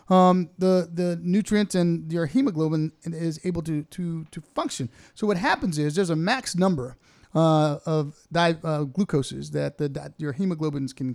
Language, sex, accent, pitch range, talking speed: English, male, American, 145-175 Hz, 170 wpm